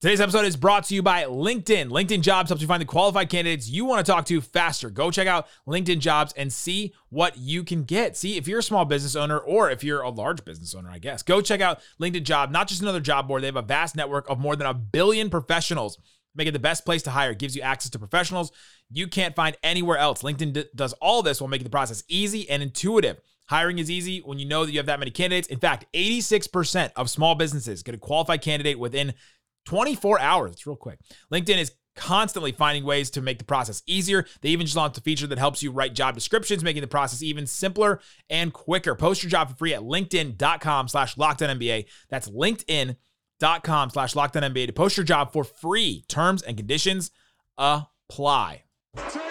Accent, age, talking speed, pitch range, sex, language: American, 30-49, 220 wpm, 140-180 Hz, male, English